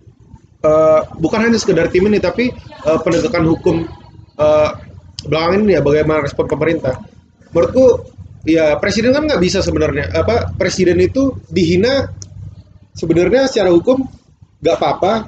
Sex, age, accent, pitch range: male, 30-49, native, 155-205 Hz